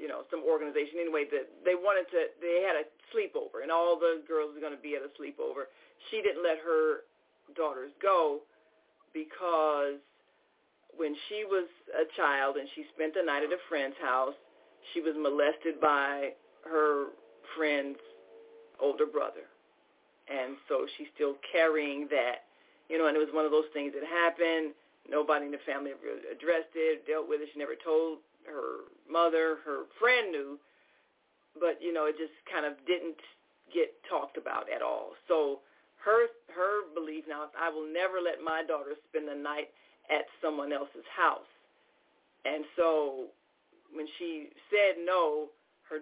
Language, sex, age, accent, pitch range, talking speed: English, female, 40-59, American, 150-210 Hz, 165 wpm